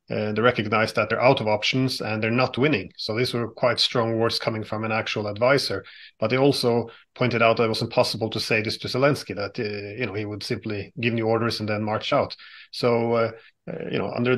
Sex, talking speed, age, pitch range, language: male, 240 wpm, 30-49, 110-130 Hz, English